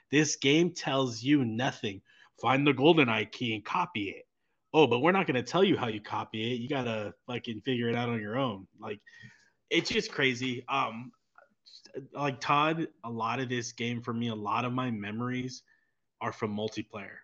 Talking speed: 195 wpm